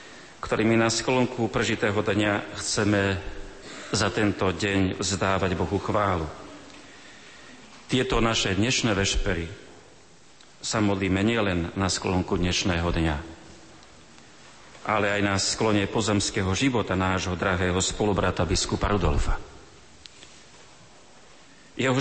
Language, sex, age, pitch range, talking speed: Slovak, male, 40-59, 95-110 Hz, 95 wpm